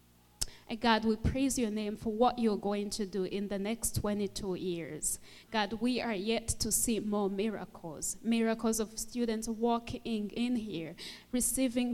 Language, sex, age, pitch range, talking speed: English, female, 20-39, 195-230 Hz, 155 wpm